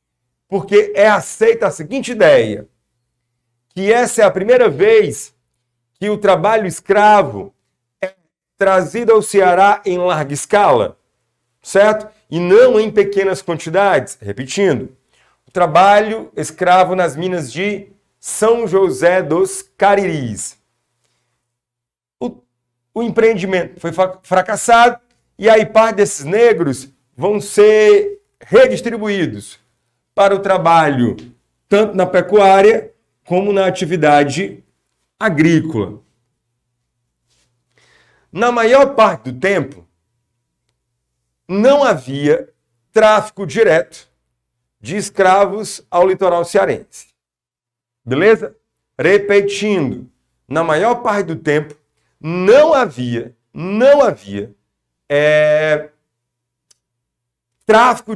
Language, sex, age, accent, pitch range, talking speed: Portuguese, male, 50-69, Brazilian, 125-210 Hz, 90 wpm